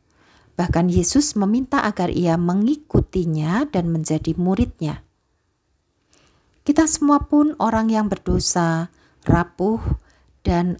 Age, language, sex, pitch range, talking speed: 50-69, Indonesian, female, 160-210 Hz, 90 wpm